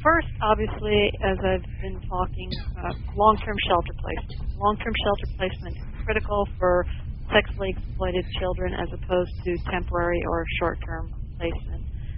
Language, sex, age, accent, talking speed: English, female, 40-59, American, 130 wpm